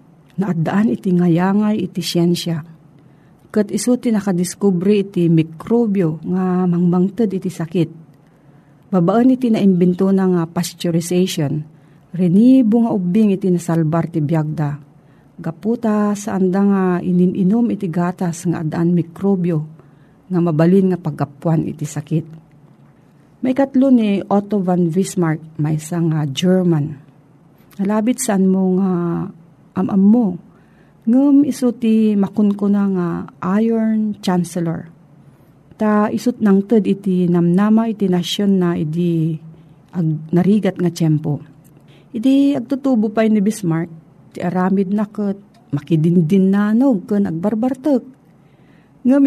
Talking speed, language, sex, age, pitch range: 115 wpm, Filipino, female, 40-59, 165-210 Hz